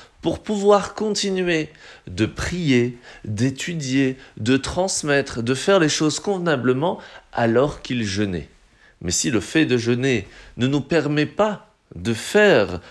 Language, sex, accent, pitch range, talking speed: French, male, French, 110-150 Hz, 130 wpm